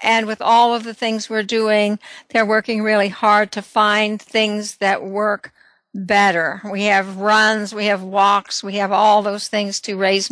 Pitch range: 205-255 Hz